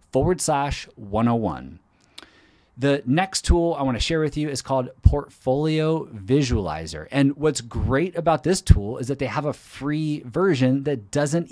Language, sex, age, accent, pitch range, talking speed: English, male, 30-49, American, 110-145 Hz, 160 wpm